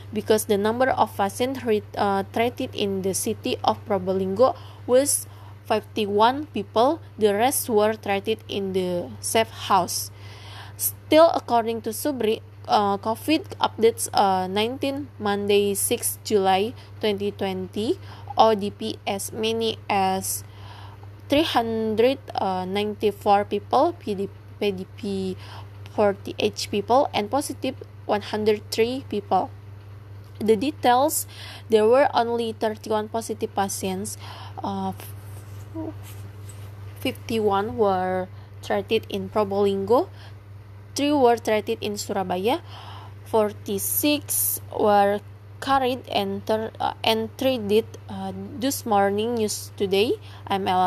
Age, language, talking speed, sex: 20-39, Indonesian, 100 wpm, female